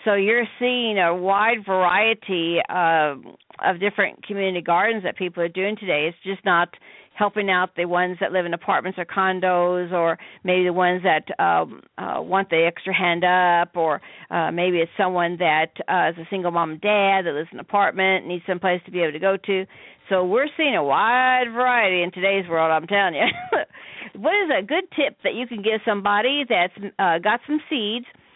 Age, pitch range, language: 50-69, 185-225 Hz, English